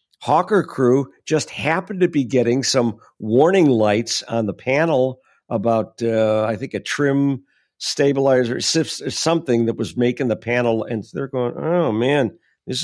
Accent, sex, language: American, male, English